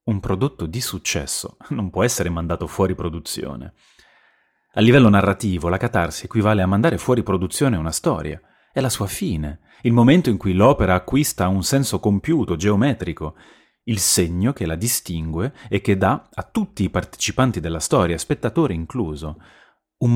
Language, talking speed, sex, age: Italian, 160 wpm, male, 30-49